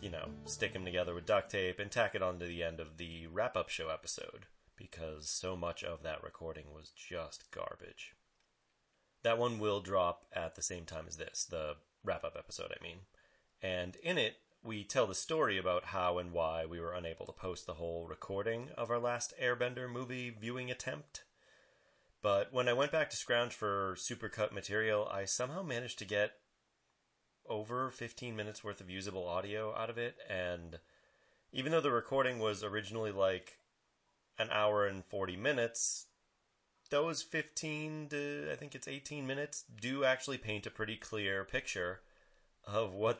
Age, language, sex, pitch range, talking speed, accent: 30-49, English, male, 90-120 Hz, 170 wpm, American